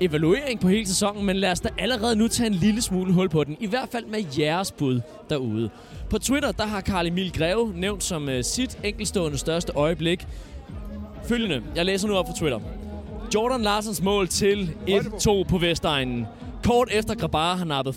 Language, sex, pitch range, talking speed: Danish, male, 150-210 Hz, 185 wpm